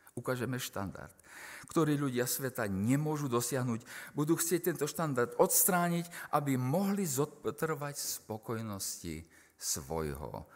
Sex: male